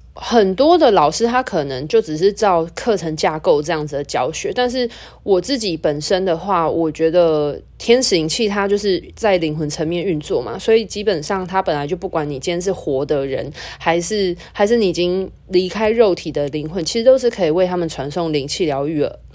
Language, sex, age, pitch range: Chinese, female, 20-39, 160-215 Hz